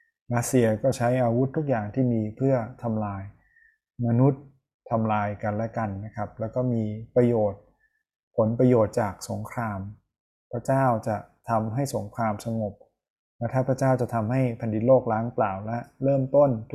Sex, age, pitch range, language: male, 20-39, 110-130 Hz, Thai